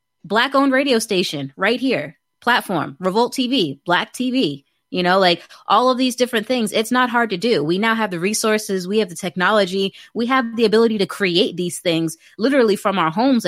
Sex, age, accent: female, 20-39, American